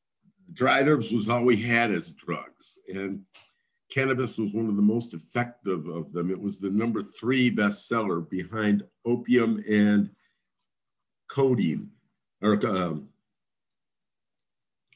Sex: male